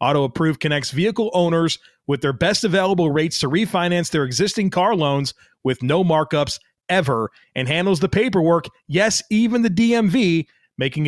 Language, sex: English, male